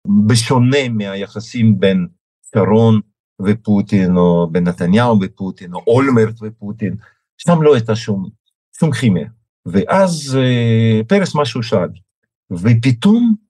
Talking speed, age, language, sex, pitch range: 105 wpm, 50-69, Hebrew, male, 100-120 Hz